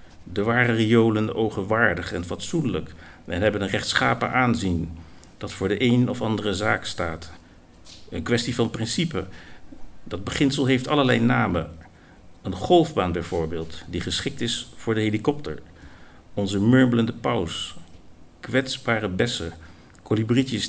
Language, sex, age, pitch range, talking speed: Dutch, male, 50-69, 85-115 Hz, 125 wpm